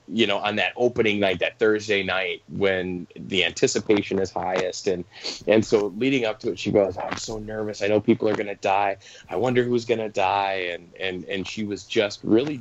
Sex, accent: male, American